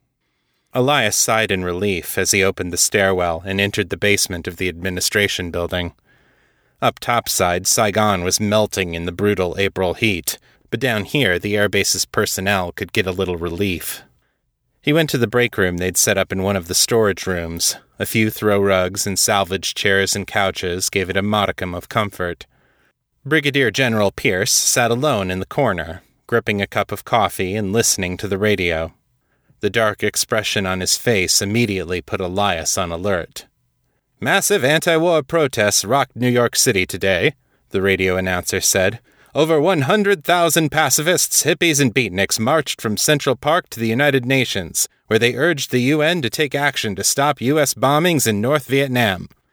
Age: 30-49